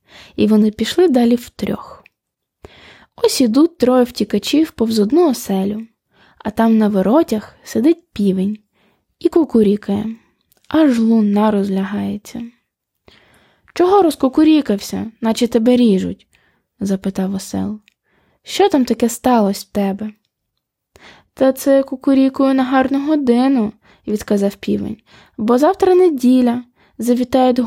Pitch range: 215-285 Hz